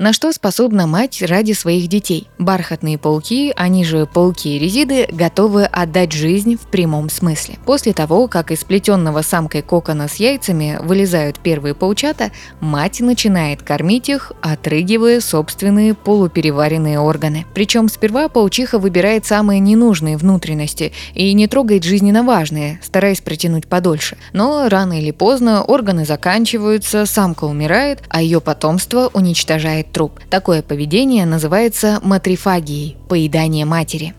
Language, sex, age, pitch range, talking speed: Russian, female, 20-39, 160-215 Hz, 125 wpm